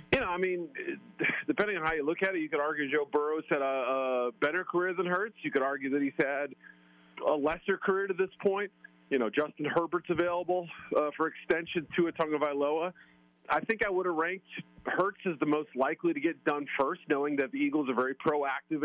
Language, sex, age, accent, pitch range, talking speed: English, male, 40-59, American, 130-175 Hz, 225 wpm